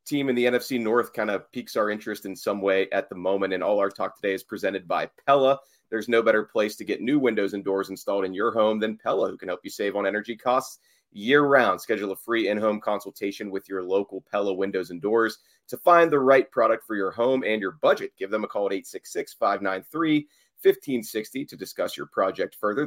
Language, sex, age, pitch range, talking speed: English, male, 30-49, 100-140 Hz, 220 wpm